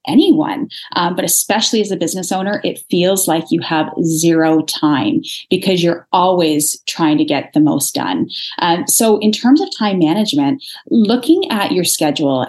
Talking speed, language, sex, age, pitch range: 170 wpm, English, female, 30-49, 165-270 Hz